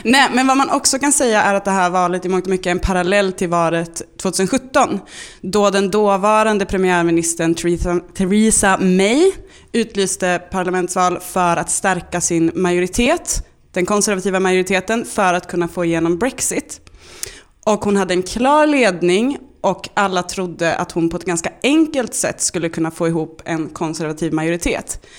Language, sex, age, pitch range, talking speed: Swedish, female, 20-39, 175-220 Hz, 155 wpm